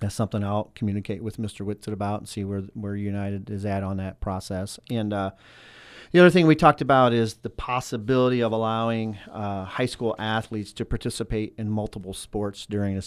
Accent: American